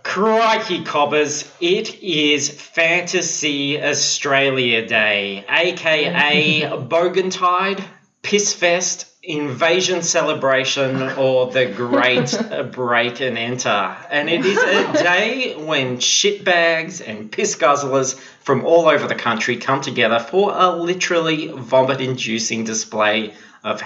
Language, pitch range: English, 120-160 Hz